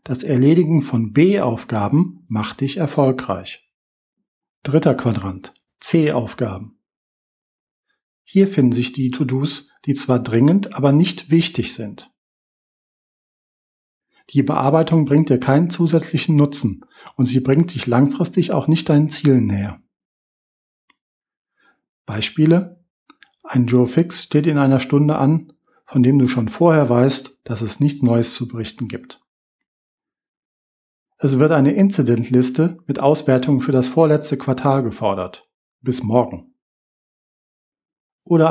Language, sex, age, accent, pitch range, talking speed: German, male, 40-59, German, 125-155 Hz, 115 wpm